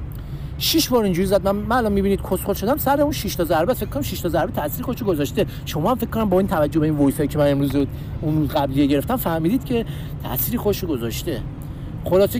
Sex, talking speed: male, 210 wpm